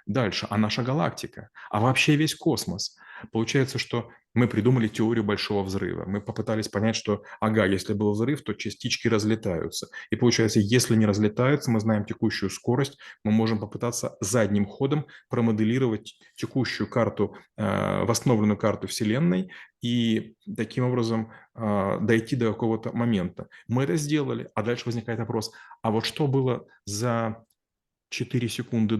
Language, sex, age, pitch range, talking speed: Russian, male, 30-49, 105-125 Hz, 145 wpm